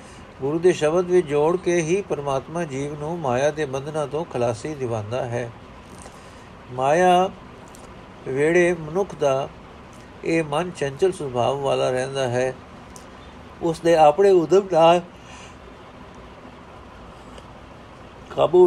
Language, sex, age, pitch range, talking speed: Punjabi, male, 60-79, 130-165 Hz, 110 wpm